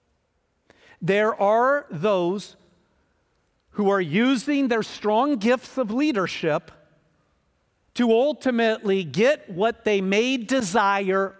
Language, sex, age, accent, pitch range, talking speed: English, male, 50-69, American, 165-255 Hz, 95 wpm